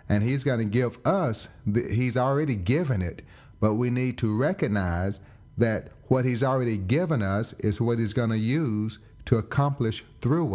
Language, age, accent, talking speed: English, 40-59, American, 170 wpm